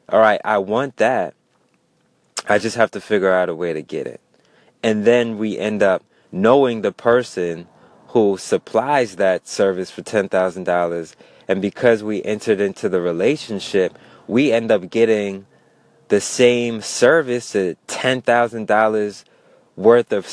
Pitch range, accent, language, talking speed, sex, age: 95-120 Hz, American, English, 140 wpm, male, 20-39